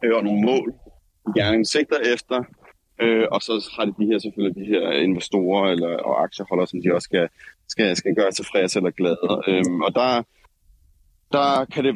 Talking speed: 170 wpm